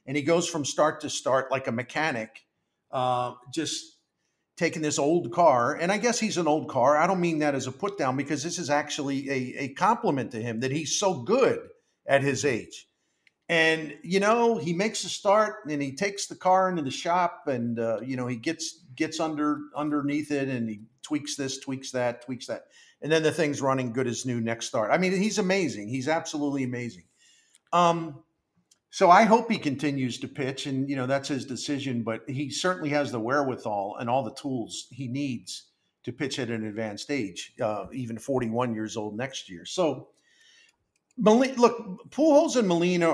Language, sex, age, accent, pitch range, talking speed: English, male, 50-69, American, 130-170 Hz, 195 wpm